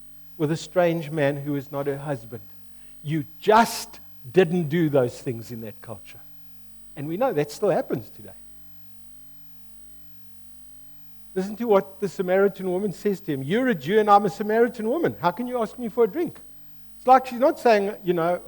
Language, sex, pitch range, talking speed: English, male, 145-230 Hz, 185 wpm